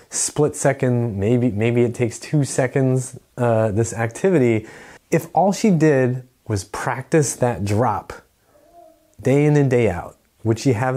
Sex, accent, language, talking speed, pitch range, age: male, American, English, 150 wpm, 110-145 Hz, 30-49